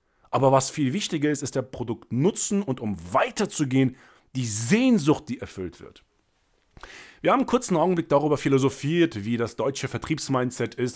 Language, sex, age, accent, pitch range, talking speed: German, male, 40-59, German, 105-150 Hz, 160 wpm